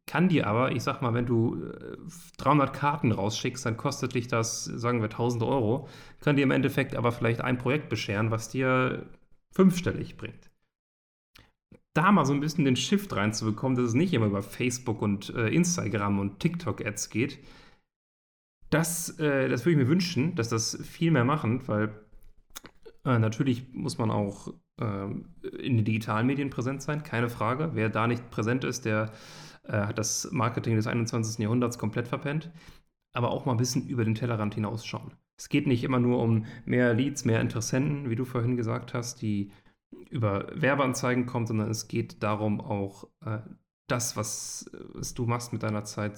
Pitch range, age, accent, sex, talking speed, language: 110-135 Hz, 30-49, German, male, 175 wpm, German